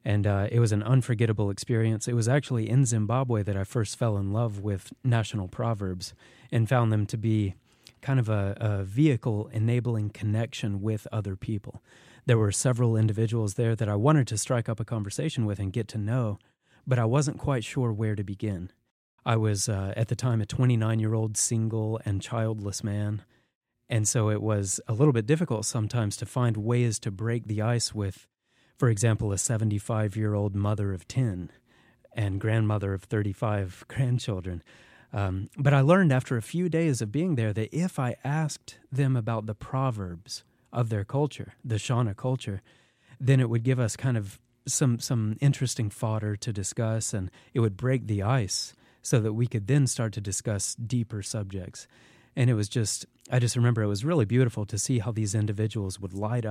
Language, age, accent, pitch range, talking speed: English, 30-49, American, 105-125 Hz, 185 wpm